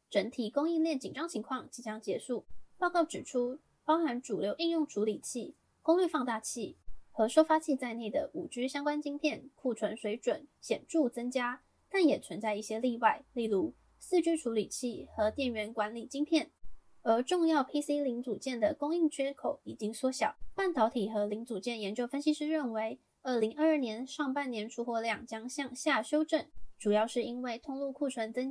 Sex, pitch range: female, 225-295 Hz